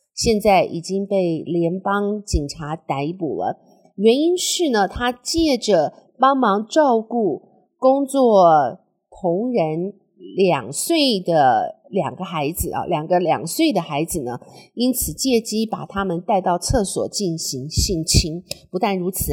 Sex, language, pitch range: female, Chinese, 180-245 Hz